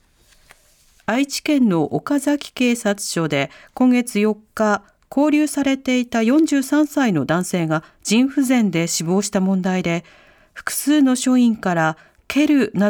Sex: female